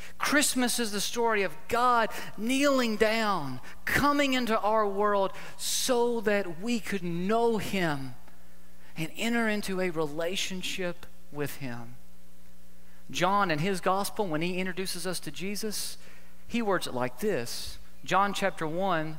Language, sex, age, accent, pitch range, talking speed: English, male, 40-59, American, 155-210 Hz, 135 wpm